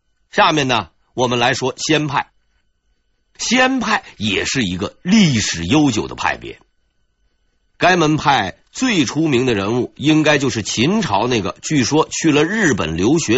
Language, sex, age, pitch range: Chinese, male, 50-69, 115-175 Hz